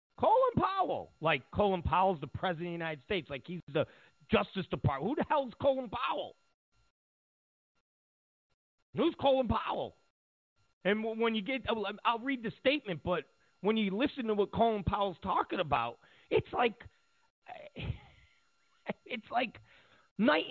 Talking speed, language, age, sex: 140 wpm, English, 40-59, male